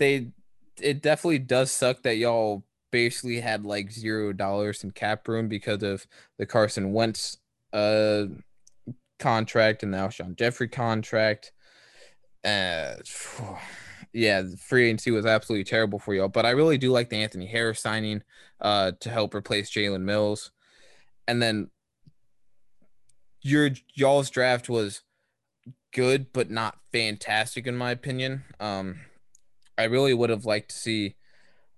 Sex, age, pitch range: male, 20-39, 105-130 Hz